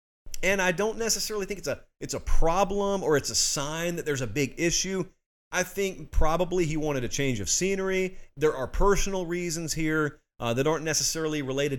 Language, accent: English, American